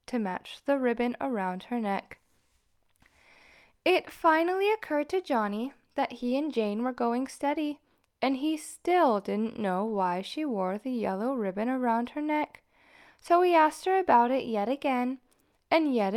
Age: 10-29